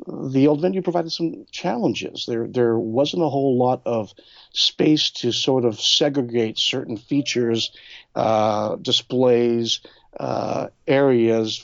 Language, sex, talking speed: English, male, 125 wpm